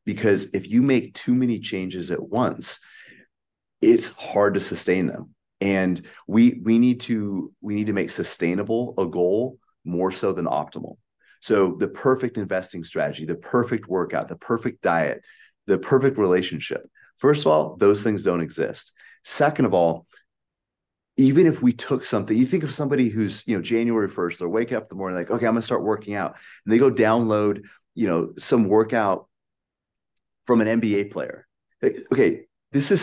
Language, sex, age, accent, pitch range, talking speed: English, male, 30-49, American, 100-125 Hz, 175 wpm